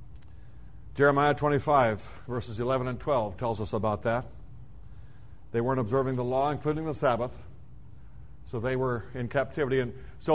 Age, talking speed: 60-79, 145 wpm